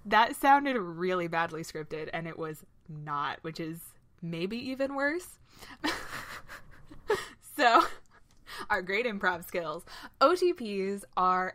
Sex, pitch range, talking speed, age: female, 160-200 Hz, 110 wpm, 20-39